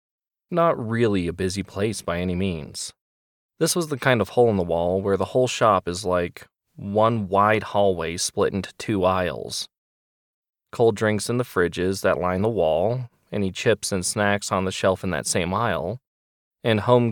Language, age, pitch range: English, 20-39, 90-120 Hz